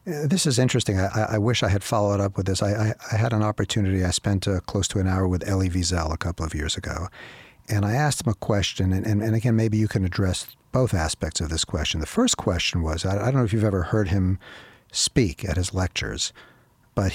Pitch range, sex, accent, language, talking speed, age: 90-115 Hz, male, American, English, 240 wpm, 50-69